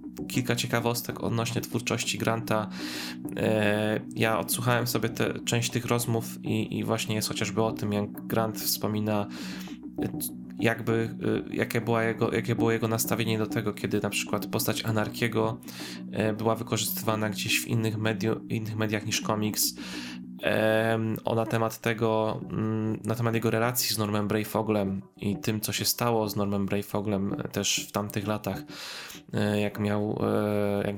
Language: Polish